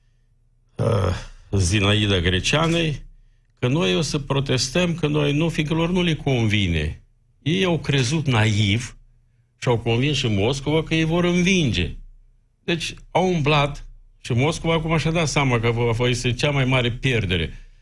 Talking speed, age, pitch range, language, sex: 145 wpm, 50-69, 100-130 Hz, Romanian, male